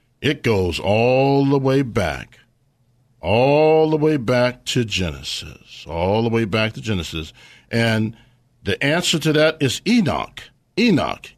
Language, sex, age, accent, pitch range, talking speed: English, male, 50-69, American, 95-130 Hz, 135 wpm